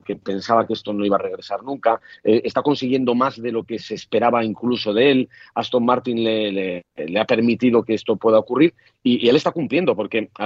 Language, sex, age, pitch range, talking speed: Spanish, male, 40-59, 105-130 Hz, 220 wpm